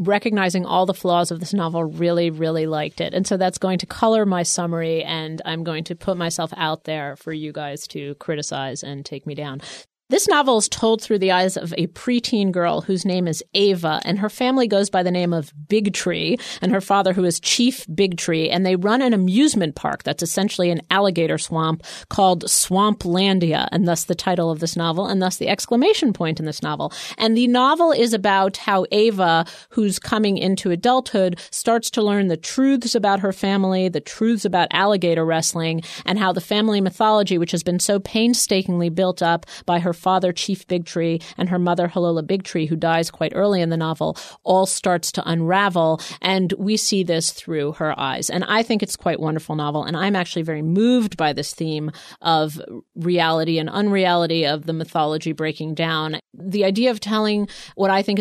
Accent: American